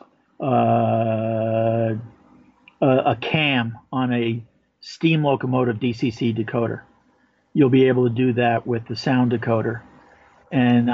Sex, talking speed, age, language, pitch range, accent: male, 115 wpm, 50-69, English, 120-140 Hz, American